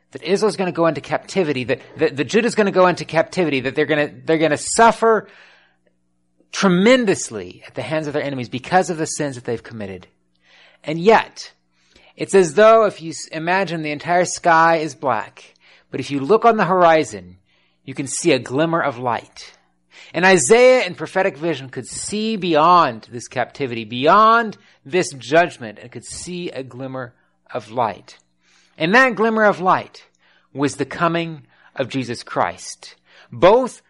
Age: 30-49